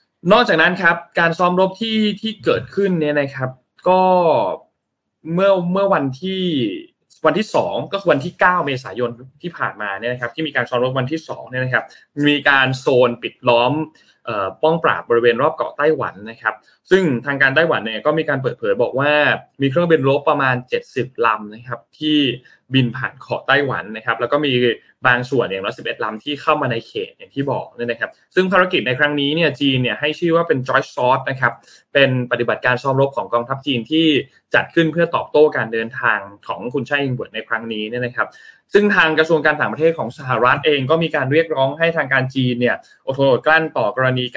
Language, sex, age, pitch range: Thai, male, 20-39, 125-165 Hz